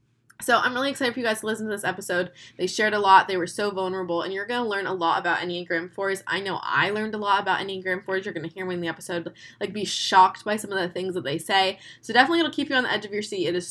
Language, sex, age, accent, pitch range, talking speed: English, female, 20-39, American, 185-235 Hz, 310 wpm